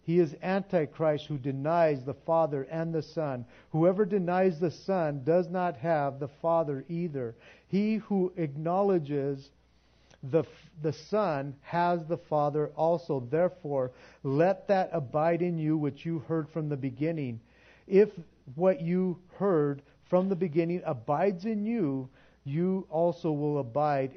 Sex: male